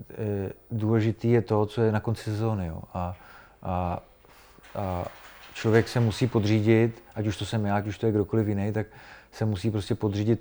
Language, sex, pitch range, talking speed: Czech, male, 100-110 Hz, 185 wpm